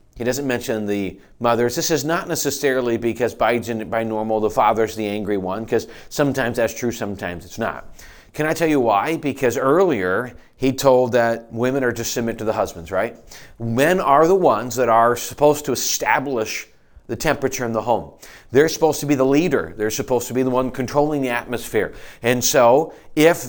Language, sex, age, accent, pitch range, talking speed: English, male, 40-59, American, 115-150 Hz, 190 wpm